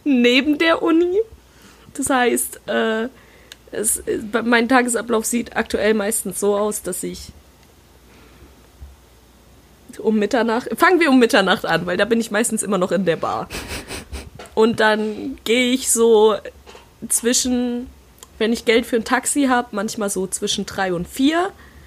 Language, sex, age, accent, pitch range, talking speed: German, female, 20-39, German, 195-250 Hz, 145 wpm